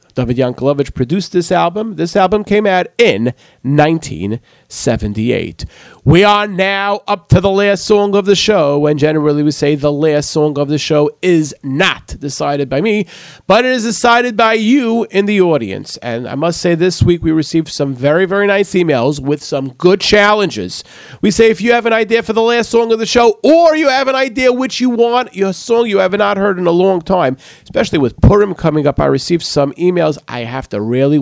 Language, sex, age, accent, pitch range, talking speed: English, male, 40-59, American, 145-205 Hz, 210 wpm